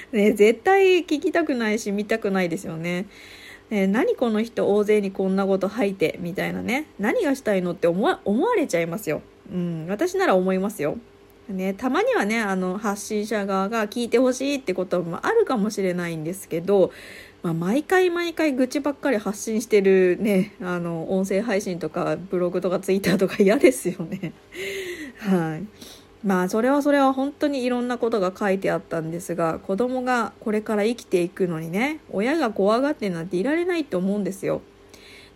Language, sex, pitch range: Japanese, female, 185-255 Hz